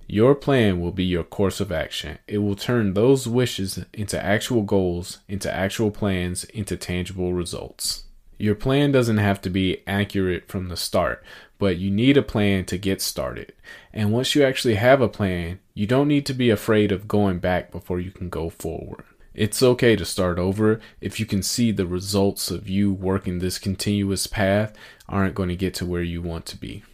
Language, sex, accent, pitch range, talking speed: English, male, American, 90-110 Hz, 195 wpm